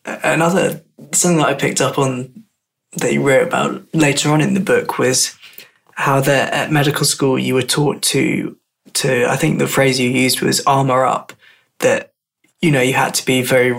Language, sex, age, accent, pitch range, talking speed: English, male, 20-39, British, 130-145 Hz, 190 wpm